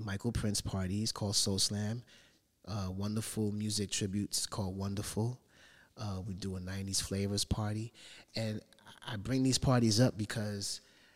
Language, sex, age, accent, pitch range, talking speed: English, male, 30-49, American, 95-110 Hz, 140 wpm